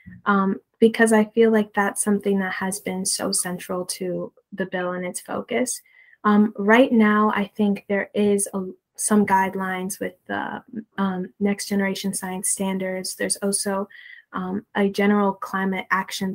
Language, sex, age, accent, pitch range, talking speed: English, female, 10-29, American, 195-215 Hz, 145 wpm